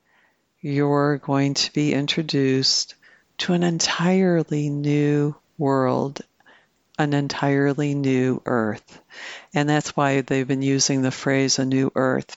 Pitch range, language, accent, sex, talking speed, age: 140-160 Hz, English, American, female, 120 wpm, 60-79